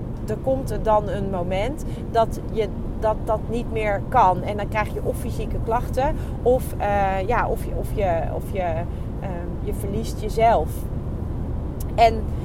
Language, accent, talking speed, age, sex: Dutch, Dutch, 165 wpm, 30-49, female